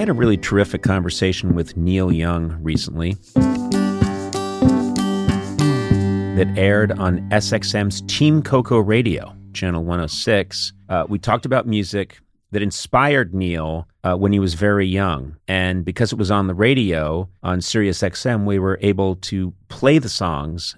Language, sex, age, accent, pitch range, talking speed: English, male, 40-59, American, 90-110 Hz, 145 wpm